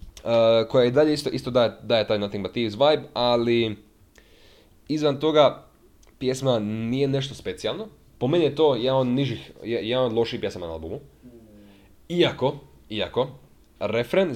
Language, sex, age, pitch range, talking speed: Croatian, male, 20-39, 105-130 Hz, 145 wpm